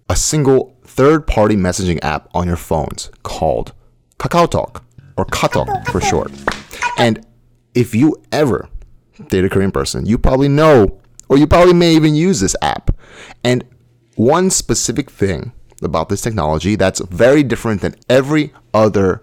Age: 30-49